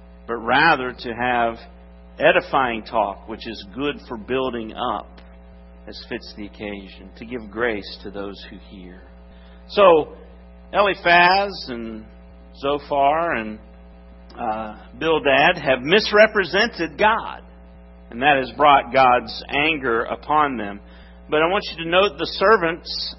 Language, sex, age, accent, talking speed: English, male, 50-69, American, 125 wpm